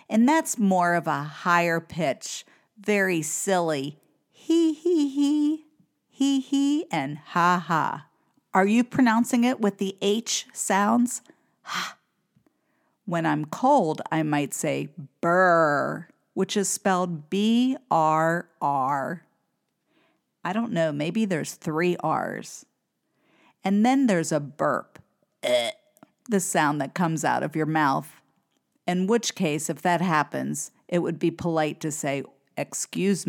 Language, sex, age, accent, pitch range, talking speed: English, female, 50-69, American, 160-235 Hz, 125 wpm